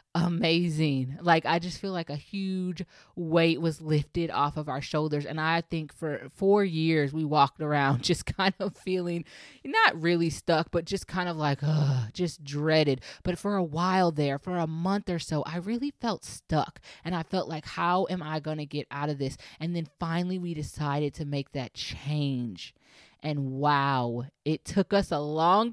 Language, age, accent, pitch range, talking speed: English, 20-39, American, 150-180 Hz, 190 wpm